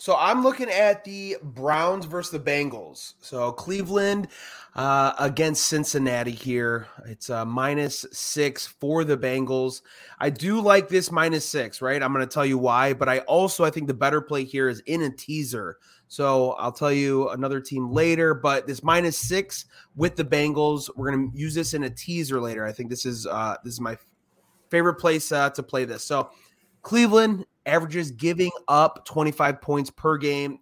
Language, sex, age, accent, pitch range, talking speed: English, male, 30-49, American, 135-160 Hz, 185 wpm